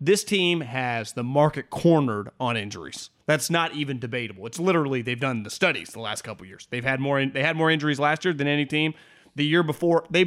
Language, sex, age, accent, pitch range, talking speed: English, male, 30-49, American, 135-175 Hz, 235 wpm